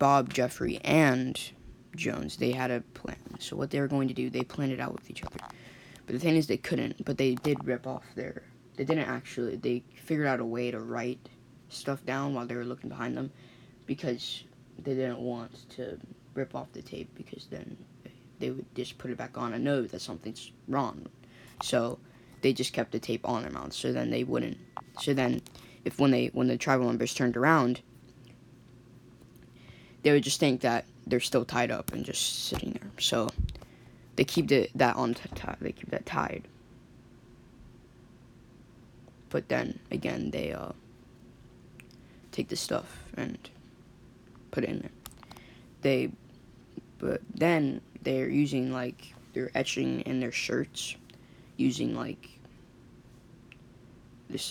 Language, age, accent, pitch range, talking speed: English, 10-29, American, 120-130 Hz, 165 wpm